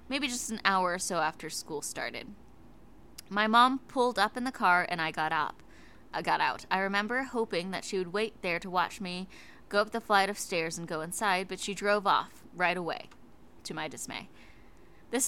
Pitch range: 170-215 Hz